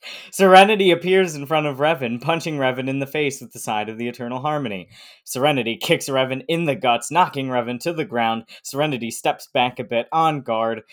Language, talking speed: English, 200 wpm